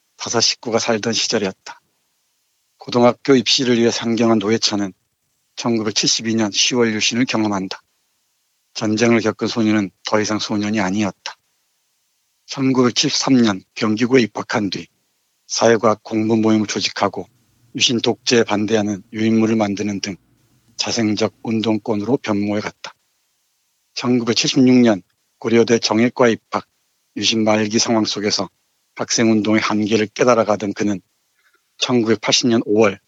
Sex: male